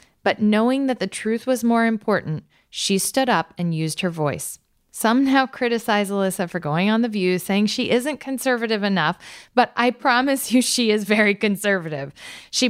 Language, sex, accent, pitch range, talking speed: English, female, American, 175-240 Hz, 180 wpm